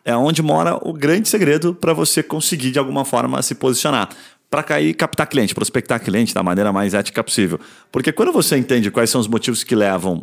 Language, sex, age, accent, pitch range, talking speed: Portuguese, male, 30-49, Brazilian, 100-135 Hz, 210 wpm